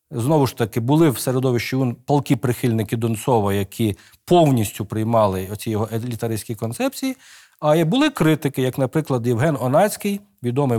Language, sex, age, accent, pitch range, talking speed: Ukrainian, male, 40-59, native, 110-155 Hz, 135 wpm